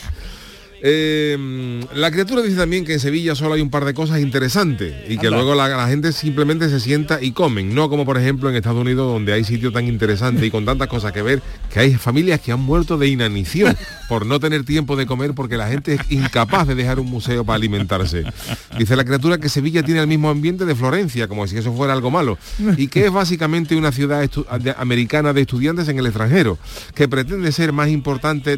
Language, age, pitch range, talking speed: Spanish, 40-59, 120-150 Hz, 215 wpm